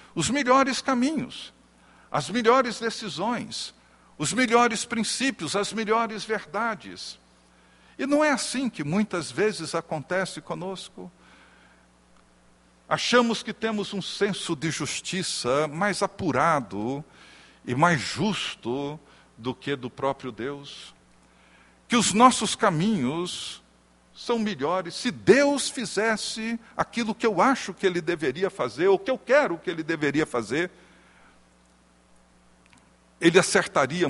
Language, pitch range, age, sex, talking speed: Portuguese, 130-220 Hz, 60-79, male, 115 wpm